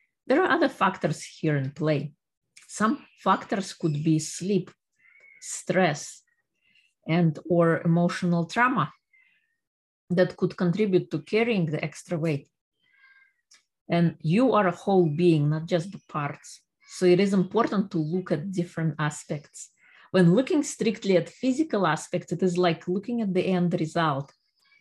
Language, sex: English, female